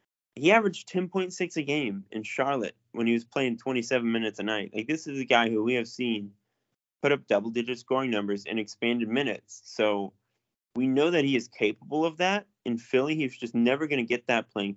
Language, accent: English, American